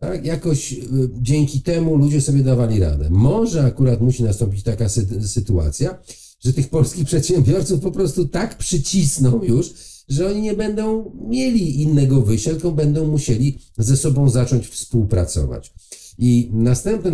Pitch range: 110-135 Hz